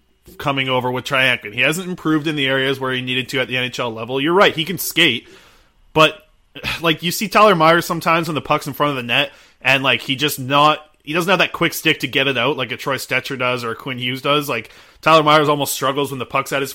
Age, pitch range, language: 20-39, 130-155 Hz, English